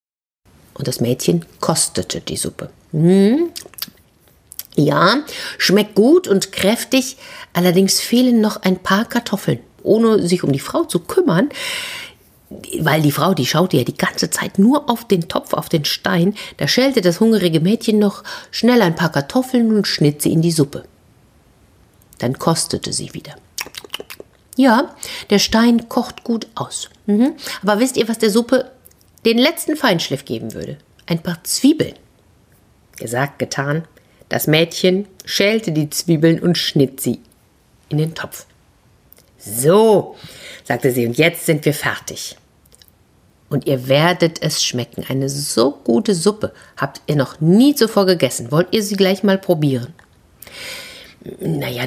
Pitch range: 140-220 Hz